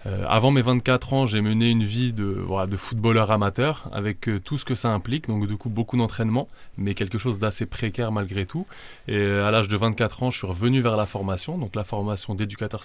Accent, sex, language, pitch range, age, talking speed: French, male, French, 100-115 Hz, 20-39, 215 wpm